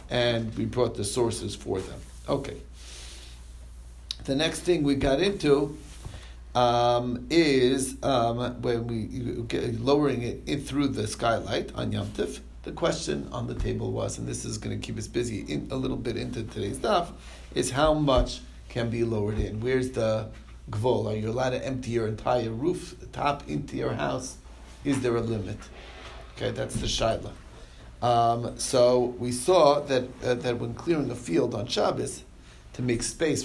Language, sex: English, male